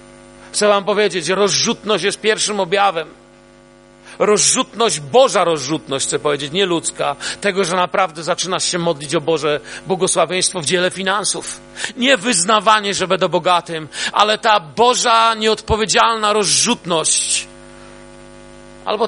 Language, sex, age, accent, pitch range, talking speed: Polish, male, 40-59, native, 155-205 Hz, 115 wpm